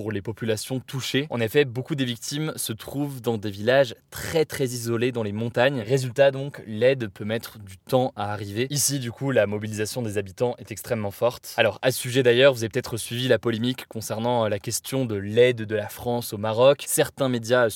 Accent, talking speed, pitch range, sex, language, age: French, 205 wpm, 110-130 Hz, male, French, 20-39